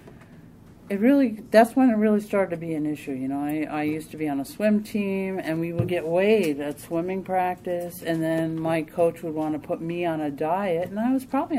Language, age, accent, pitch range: English, 50-69, American, 145-175 Hz